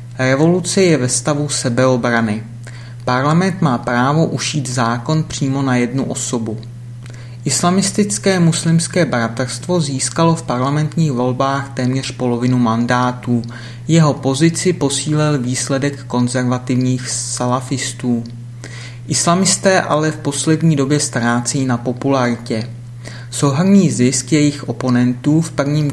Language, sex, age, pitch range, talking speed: Czech, male, 30-49, 120-150 Hz, 100 wpm